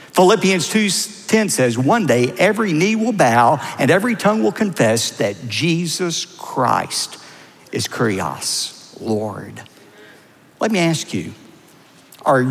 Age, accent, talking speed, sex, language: 60-79, American, 125 wpm, male, English